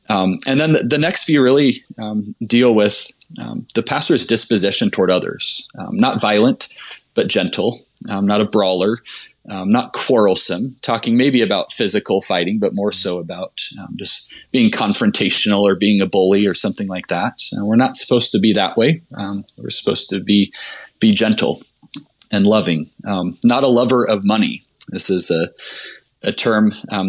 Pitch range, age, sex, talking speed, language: 95-120 Hz, 20-39, male, 175 wpm, English